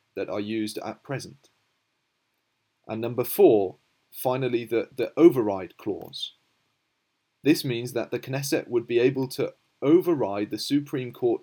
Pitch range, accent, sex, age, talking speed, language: 115-145 Hz, British, male, 30-49, 135 wpm, English